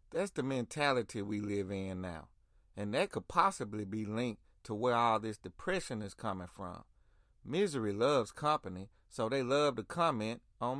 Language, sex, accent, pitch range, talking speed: English, male, American, 100-145 Hz, 165 wpm